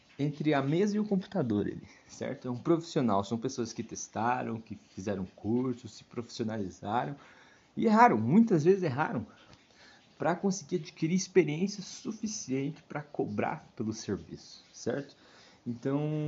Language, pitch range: Portuguese, 115-160 Hz